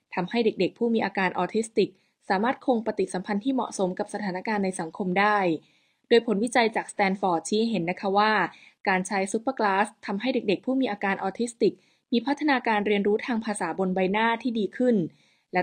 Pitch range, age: 185-230 Hz, 20-39